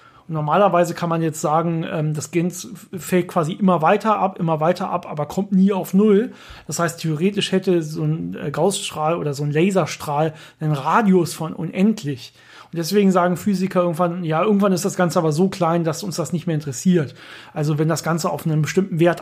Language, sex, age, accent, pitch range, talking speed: German, male, 30-49, German, 155-185 Hz, 190 wpm